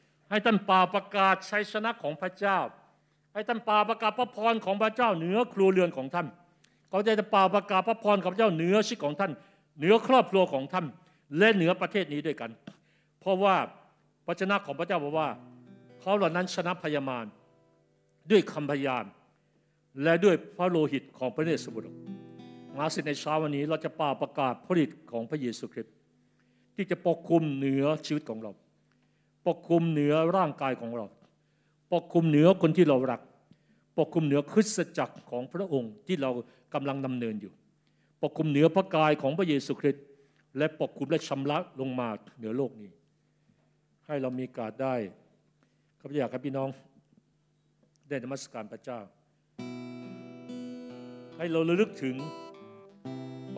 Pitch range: 130-185 Hz